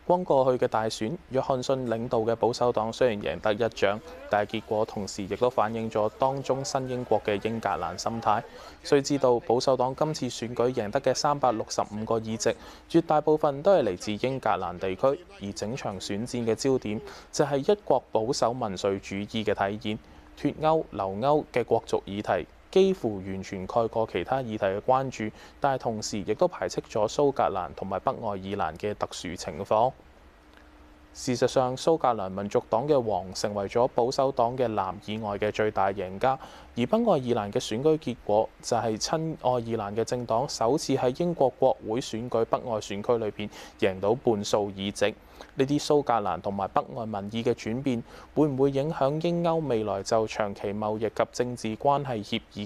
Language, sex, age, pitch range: Chinese, male, 20-39, 100-130 Hz